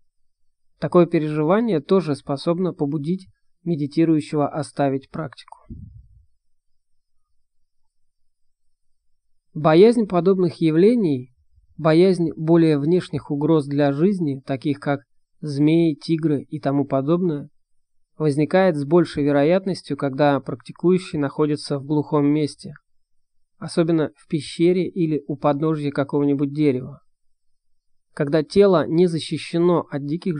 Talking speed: 95 wpm